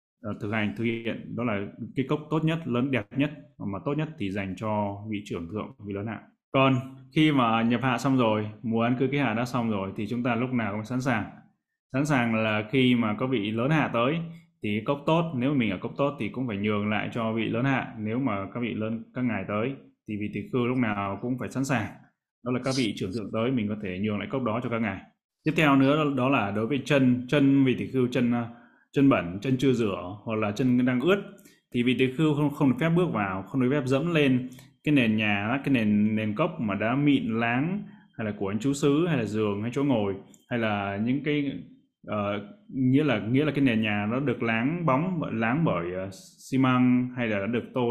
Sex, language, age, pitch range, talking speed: male, Vietnamese, 20-39, 110-140 Hz, 250 wpm